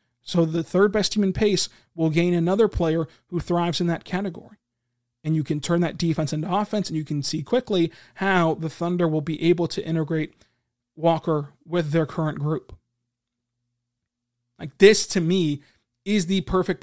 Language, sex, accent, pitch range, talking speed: English, male, American, 140-180 Hz, 170 wpm